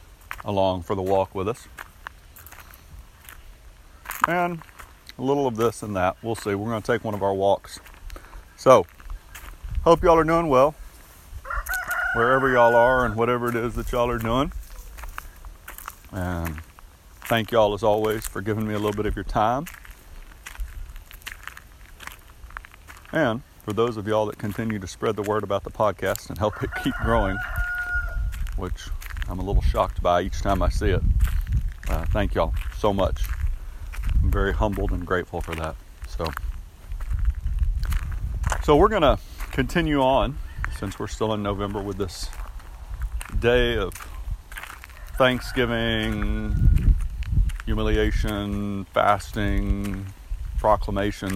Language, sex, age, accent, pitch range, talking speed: English, male, 40-59, American, 80-110 Hz, 135 wpm